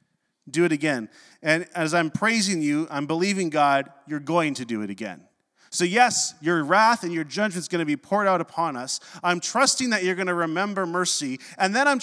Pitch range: 135-180 Hz